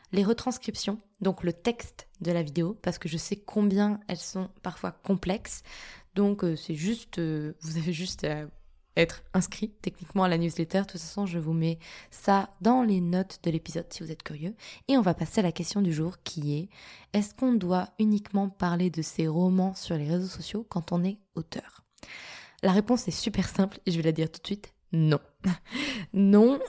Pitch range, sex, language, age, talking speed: 170-215 Hz, female, French, 20-39, 205 wpm